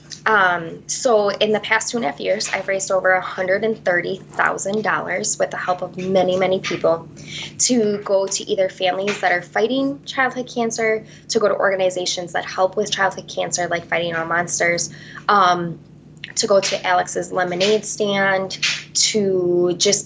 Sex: female